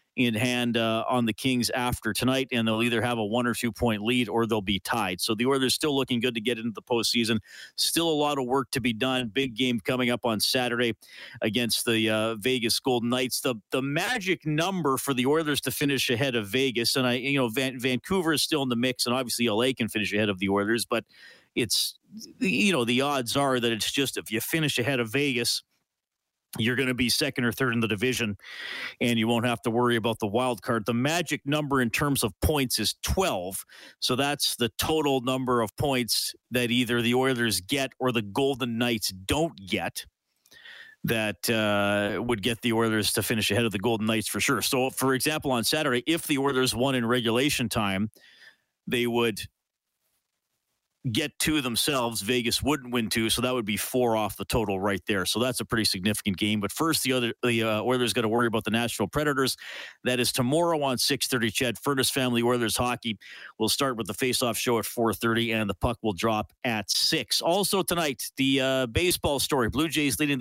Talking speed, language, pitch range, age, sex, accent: 210 wpm, English, 115-135 Hz, 40-59, male, American